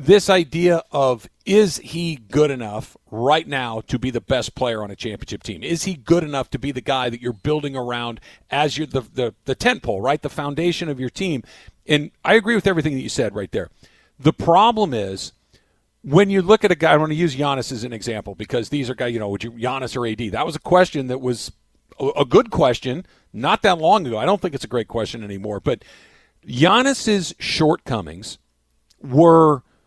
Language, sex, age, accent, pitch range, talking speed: English, male, 50-69, American, 125-180 Hz, 210 wpm